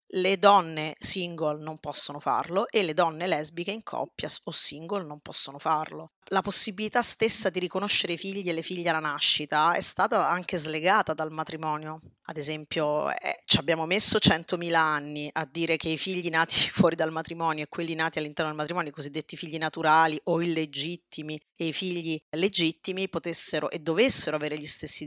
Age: 30-49